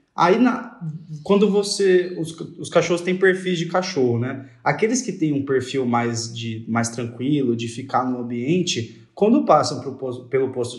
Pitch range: 130-180 Hz